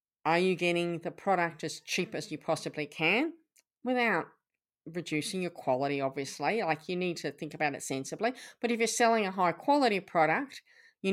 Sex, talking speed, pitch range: female, 180 wpm, 160-220 Hz